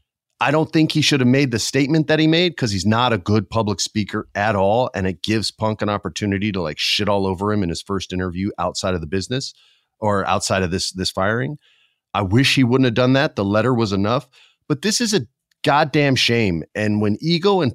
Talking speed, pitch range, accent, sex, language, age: 230 wpm, 100-135 Hz, American, male, English, 40-59